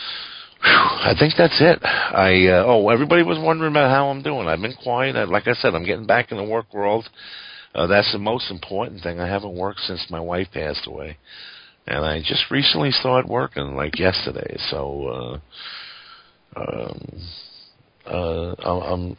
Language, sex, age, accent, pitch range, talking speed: English, male, 50-69, American, 80-100 Hz, 165 wpm